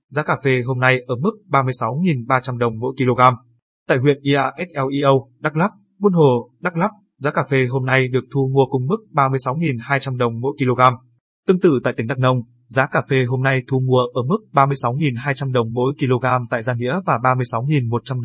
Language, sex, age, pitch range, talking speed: Vietnamese, male, 20-39, 125-145 Hz, 190 wpm